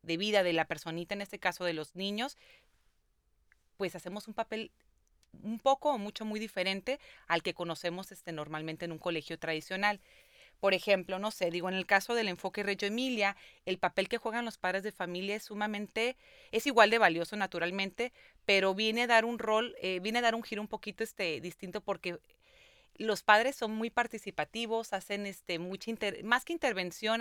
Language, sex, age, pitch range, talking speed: Spanish, female, 30-49, 180-220 Hz, 185 wpm